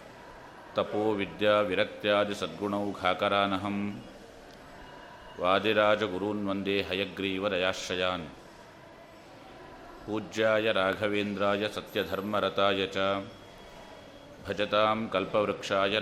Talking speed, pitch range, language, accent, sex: 40 wpm, 95-105 Hz, Kannada, native, male